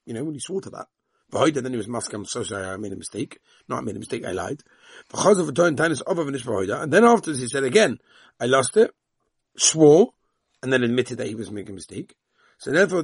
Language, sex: English, male